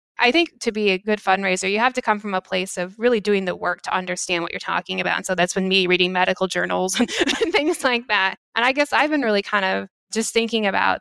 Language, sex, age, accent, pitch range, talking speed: English, female, 20-39, American, 185-215 Hz, 260 wpm